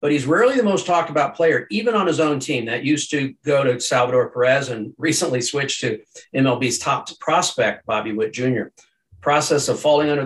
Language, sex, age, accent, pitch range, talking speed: English, male, 50-69, American, 125-165 Hz, 200 wpm